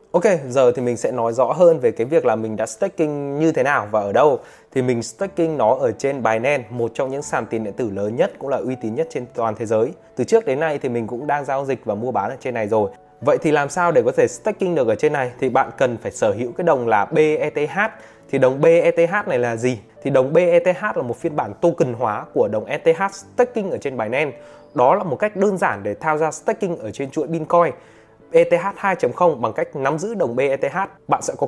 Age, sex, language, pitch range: 20-39, male, Vietnamese, 130-195 Hz